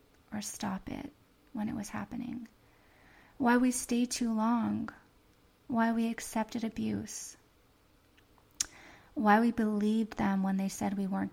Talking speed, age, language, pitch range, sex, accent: 125 wpm, 20-39, English, 200-220 Hz, female, American